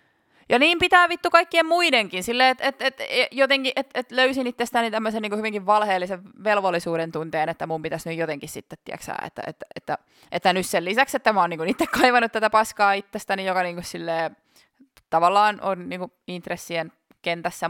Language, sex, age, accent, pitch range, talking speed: Finnish, female, 20-39, native, 165-230 Hz, 175 wpm